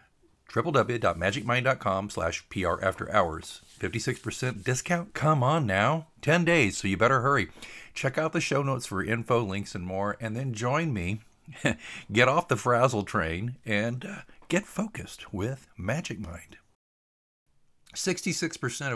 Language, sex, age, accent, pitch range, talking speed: English, male, 50-69, American, 95-135 Hz, 135 wpm